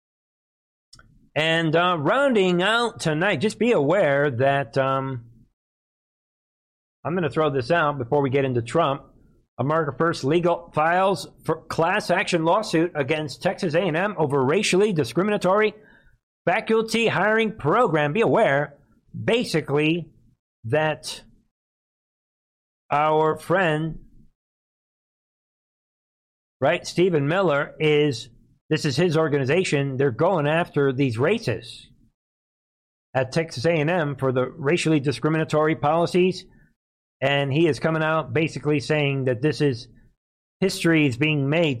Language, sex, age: English, male, 50-69